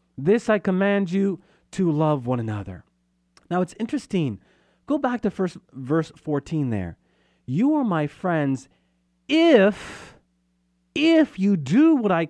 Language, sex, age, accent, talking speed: English, male, 30-49, American, 135 wpm